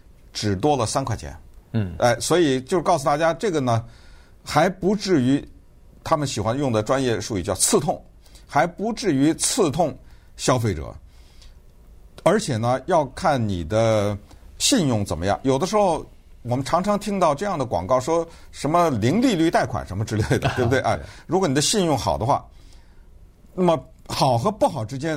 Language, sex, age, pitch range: Chinese, male, 50-69, 100-150 Hz